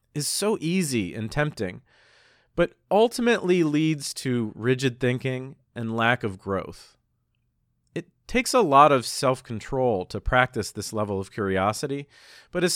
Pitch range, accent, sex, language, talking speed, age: 110-145 Hz, American, male, English, 135 wpm, 40-59